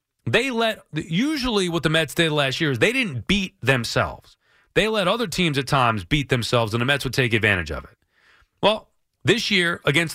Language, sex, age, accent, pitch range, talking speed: English, male, 30-49, American, 130-180 Hz, 200 wpm